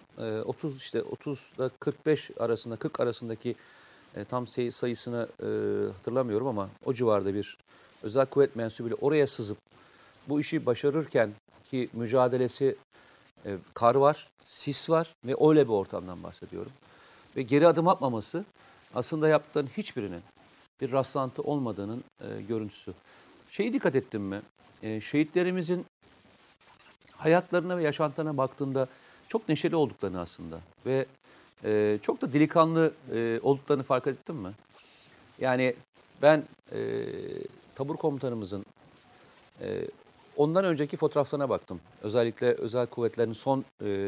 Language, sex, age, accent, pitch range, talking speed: Turkish, male, 40-59, native, 115-155 Hz, 115 wpm